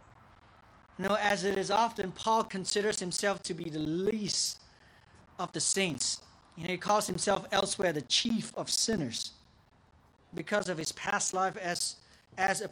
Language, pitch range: English, 155-210 Hz